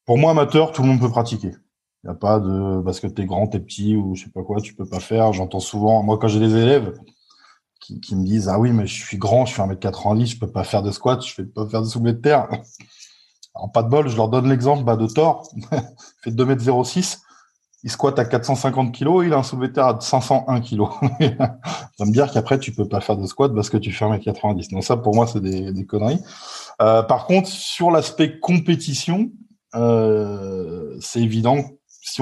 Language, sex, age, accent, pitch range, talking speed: French, male, 20-39, French, 100-130 Hz, 245 wpm